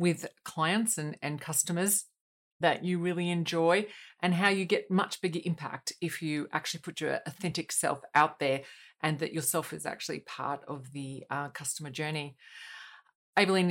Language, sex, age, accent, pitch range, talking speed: English, female, 40-59, Australian, 145-175 Hz, 160 wpm